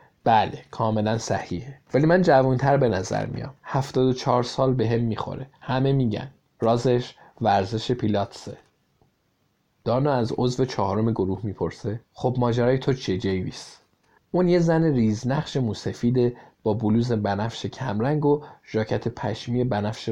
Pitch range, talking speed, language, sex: 110-140 Hz, 135 wpm, Persian, male